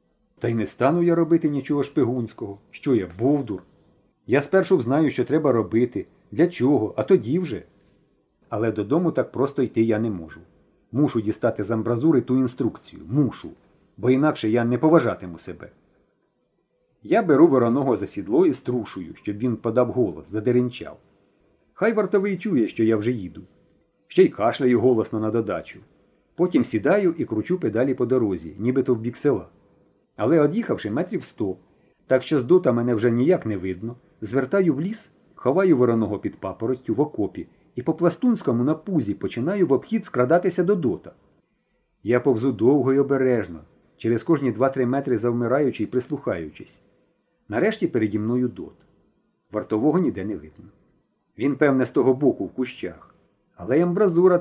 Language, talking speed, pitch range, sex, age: Ukrainian, 155 wpm, 115-155 Hz, male, 40-59